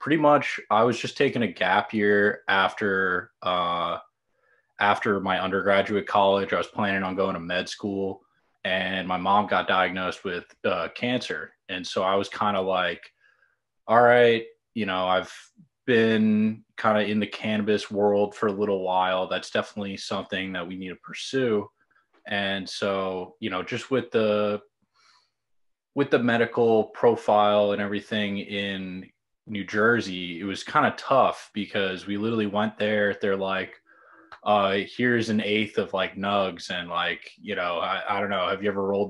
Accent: American